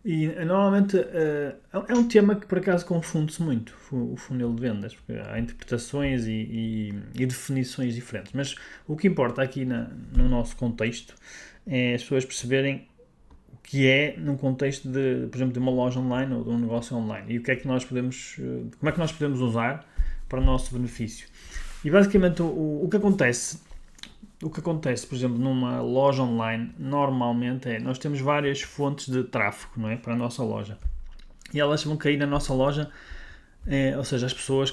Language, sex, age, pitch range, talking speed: Portuguese, male, 20-39, 120-145 Hz, 180 wpm